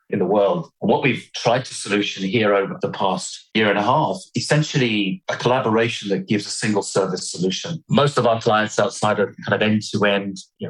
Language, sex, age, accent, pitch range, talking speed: English, male, 40-59, British, 105-125 Hz, 195 wpm